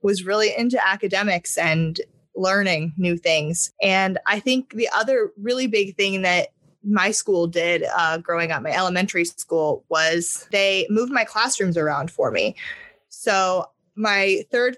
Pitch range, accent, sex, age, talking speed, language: 170-215 Hz, American, female, 20-39, 150 wpm, English